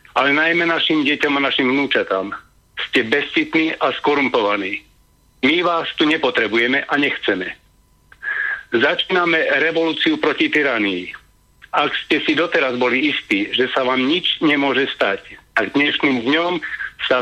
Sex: male